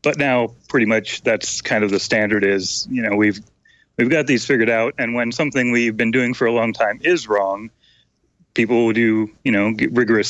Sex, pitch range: male, 105-130 Hz